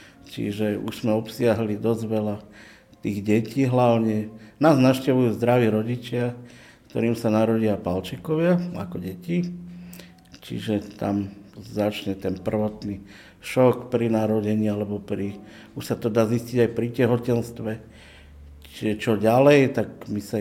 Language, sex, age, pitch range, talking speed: Slovak, male, 50-69, 105-125 Hz, 125 wpm